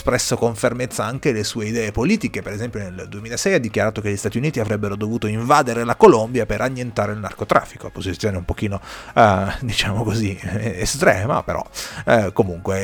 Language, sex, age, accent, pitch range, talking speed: Italian, male, 30-49, native, 105-125 Hz, 175 wpm